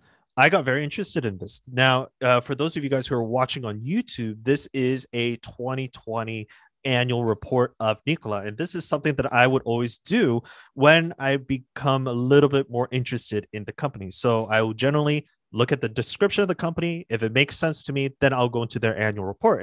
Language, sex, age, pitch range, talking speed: English, male, 30-49, 115-145 Hz, 215 wpm